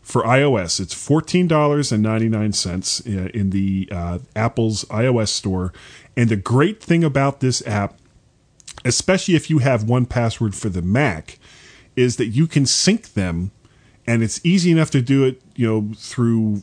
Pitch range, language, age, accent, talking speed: 105-135 Hz, English, 40-59, American, 170 wpm